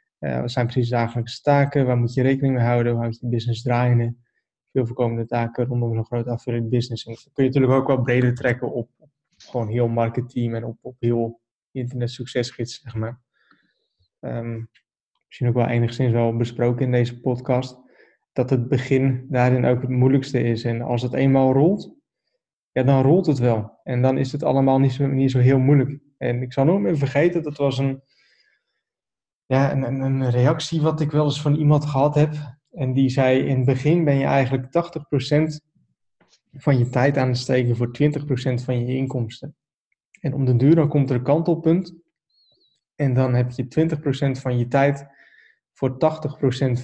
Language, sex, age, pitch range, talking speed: Dutch, male, 20-39, 125-145 Hz, 190 wpm